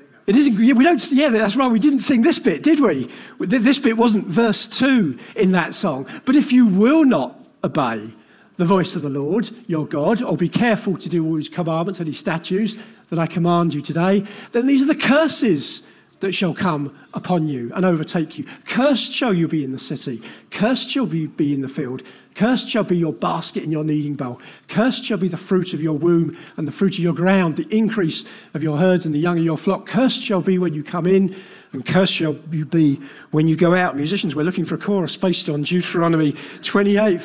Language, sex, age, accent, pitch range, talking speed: English, male, 50-69, British, 165-225 Hz, 220 wpm